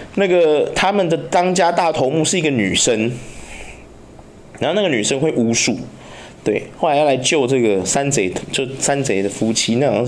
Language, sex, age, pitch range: Chinese, male, 20-39, 130-215 Hz